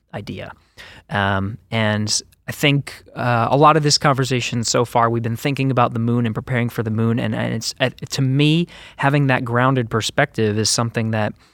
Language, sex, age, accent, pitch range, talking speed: English, male, 20-39, American, 110-130 Hz, 195 wpm